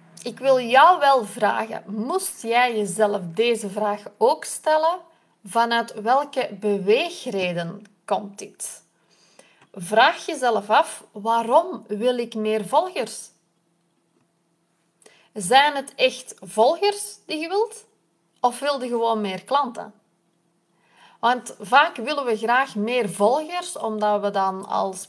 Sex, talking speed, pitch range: female, 115 wpm, 210-285 Hz